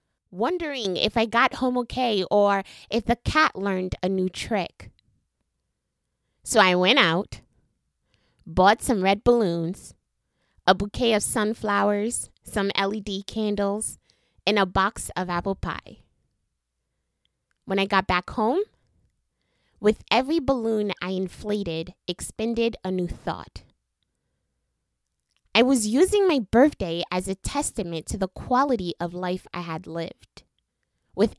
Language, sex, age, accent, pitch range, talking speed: English, female, 20-39, American, 185-240 Hz, 125 wpm